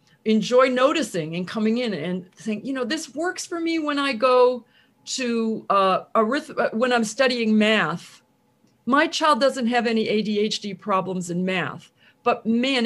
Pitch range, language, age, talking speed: 185-250 Hz, English, 50-69, 155 wpm